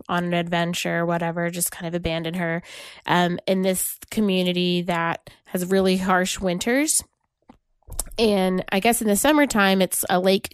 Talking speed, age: 160 wpm, 20-39